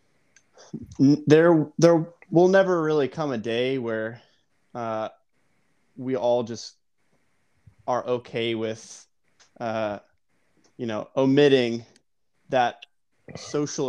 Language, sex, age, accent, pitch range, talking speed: English, male, 20-39, American, 115-135 Hz, 95 wpm